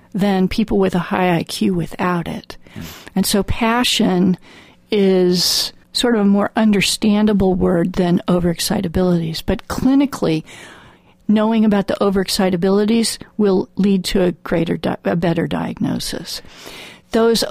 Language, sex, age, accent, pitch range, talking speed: English, female, 50-69, American, 190-235 Hz, 120 wpm